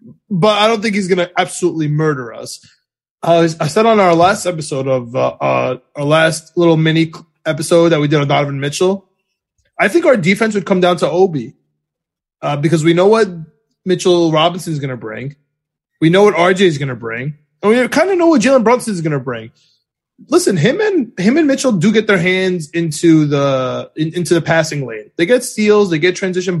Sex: male